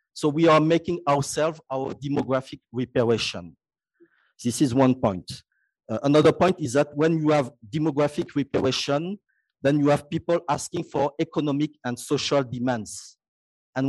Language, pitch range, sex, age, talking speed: English, 135-160 Hz, male, 50-69, 145 wpm